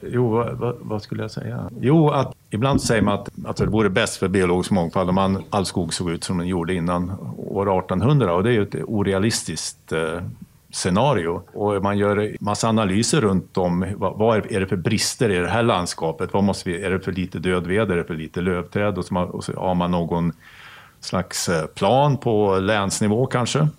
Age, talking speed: 50-69, 210 wpm